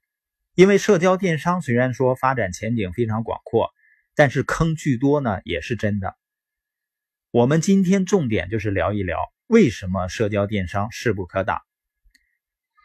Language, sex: Chinese, male